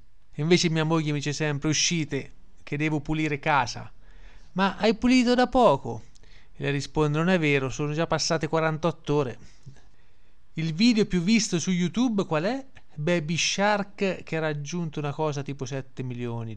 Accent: native